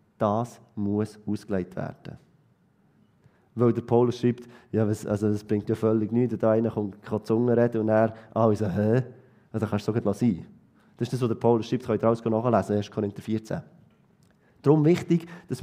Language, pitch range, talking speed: German, 110-140 Hz, 190 wpm